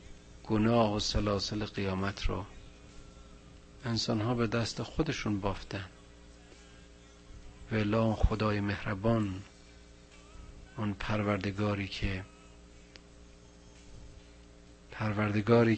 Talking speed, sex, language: 70 wpm, male, Persian